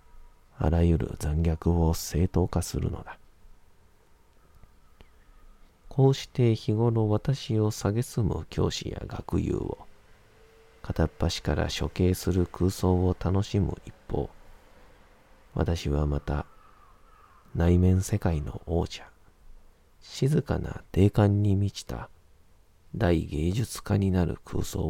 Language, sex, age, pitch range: Japanese, male, 40-59, 80-100 Hz